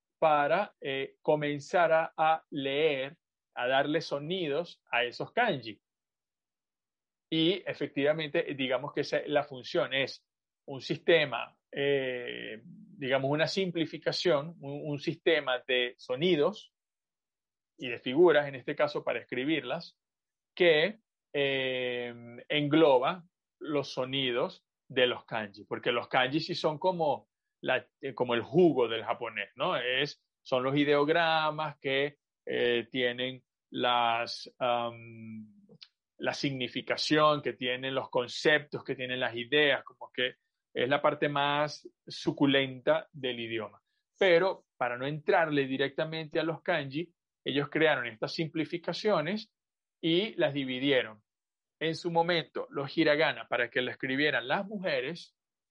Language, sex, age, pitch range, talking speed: Spanish, male, 40-59, 125-160 Hz, 125 wpm